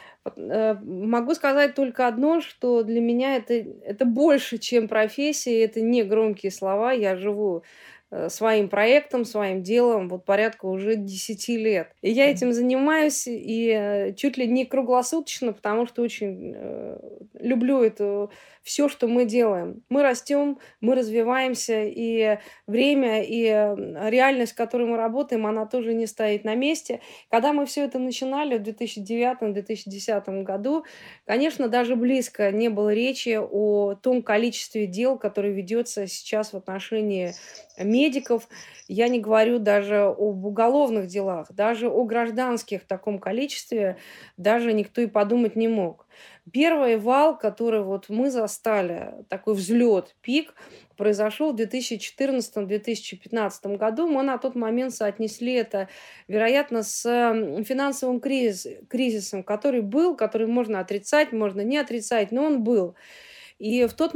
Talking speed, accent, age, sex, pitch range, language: 135 wpm, native, 20-39, female, 210-255 Hz, Russian